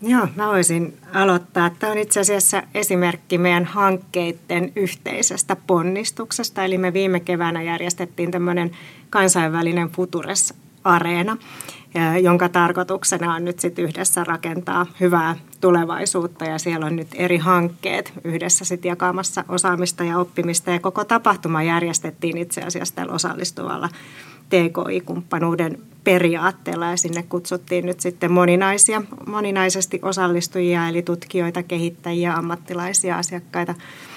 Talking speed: 115 wpm